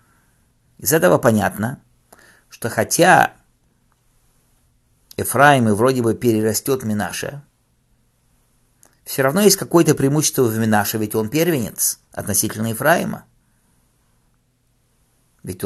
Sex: male